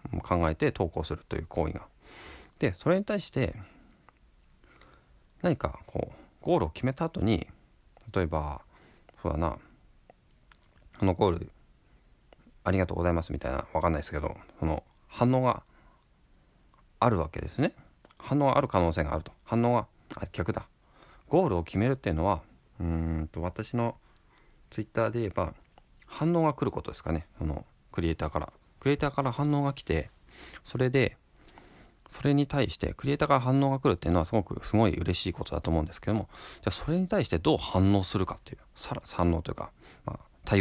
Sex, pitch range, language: male, 85-130 Hz, Japanese